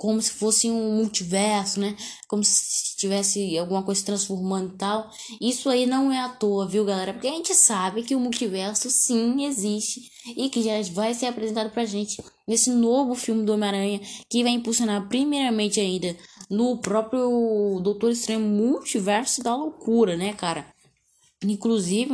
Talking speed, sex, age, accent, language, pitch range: 165 wpm, female, 10-29, Brazilian, Portuguese, 195-230 Hz